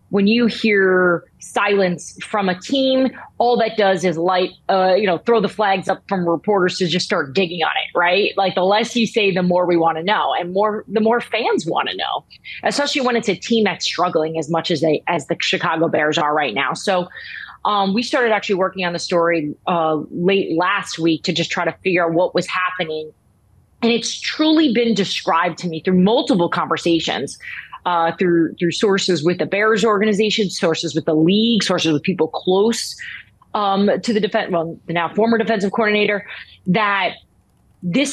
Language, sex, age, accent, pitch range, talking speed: English, female, 20-39, American, 170-215 Hz, 195 wpm